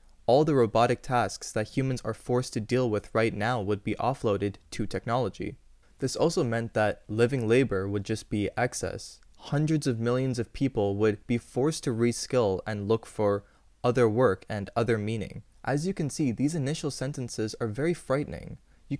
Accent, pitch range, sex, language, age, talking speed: American, 105-130 Hz, male, English, 20-39, 180 wpm